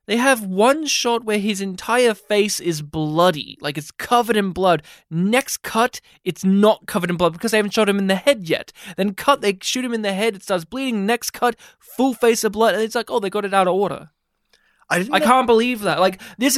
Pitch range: 175-240 Hz